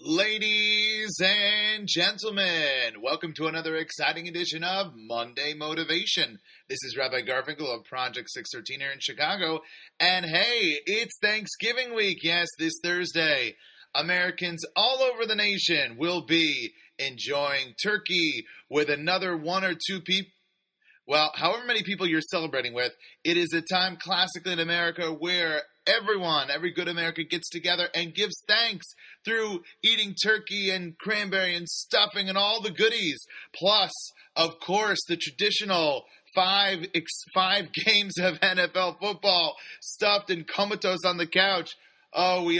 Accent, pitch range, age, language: American, 165-210 Hz, 30-49, English